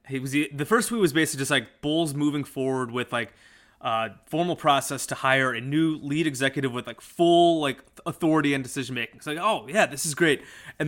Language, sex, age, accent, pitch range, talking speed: English, male, 20-39, American, 130-170 Hz, 220 wpm